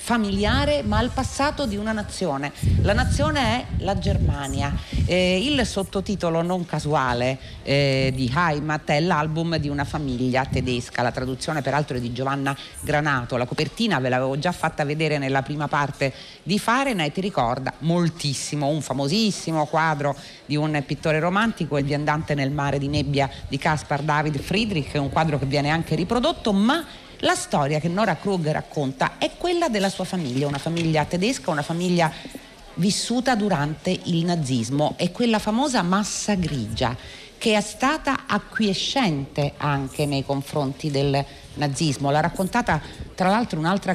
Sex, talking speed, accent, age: female, 150 wpm, native, 40-59